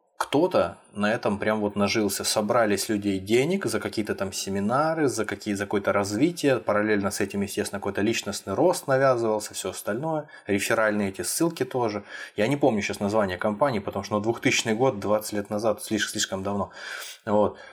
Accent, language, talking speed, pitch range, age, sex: native, Russian, 170 wpm, 100-120 Hz, 20-39, male